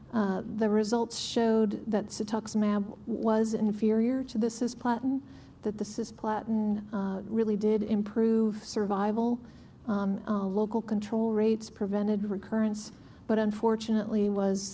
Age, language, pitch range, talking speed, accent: 50-69, English, 210-225 Hz, 120 wpm, American